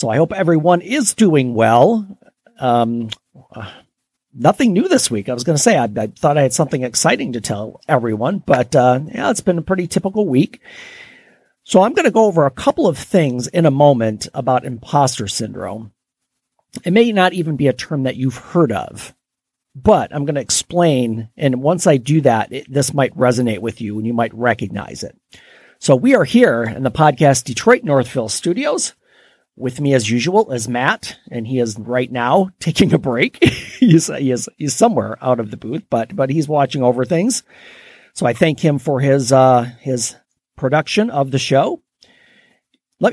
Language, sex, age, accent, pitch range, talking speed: English, male, 40-59, American, 125-175 Hz, 190 wpm